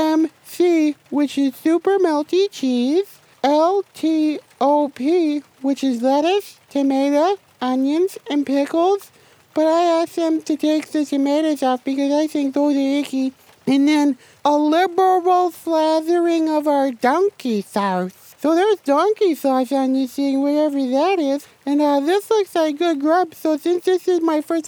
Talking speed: 150 wpm